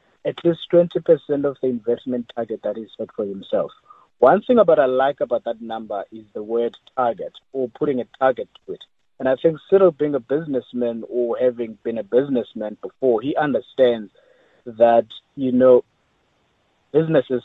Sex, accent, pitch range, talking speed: male, South African, 120-170 Hz, 170 wpm